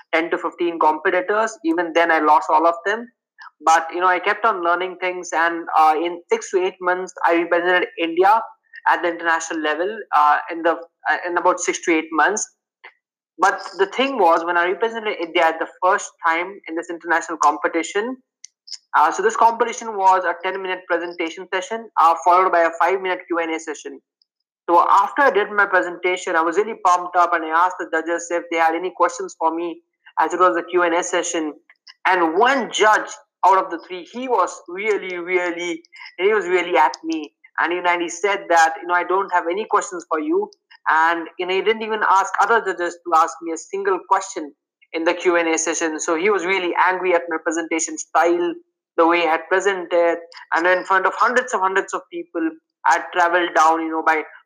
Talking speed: 205 wpm